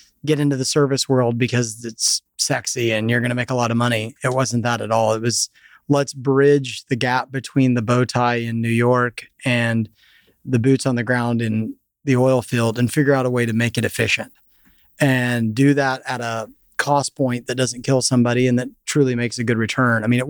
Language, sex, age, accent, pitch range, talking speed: English, male, 30-49, American, 115-135 Hz, 220 wpm